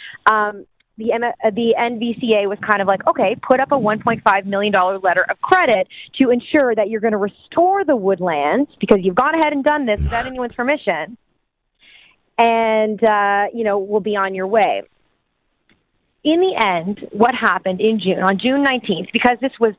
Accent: American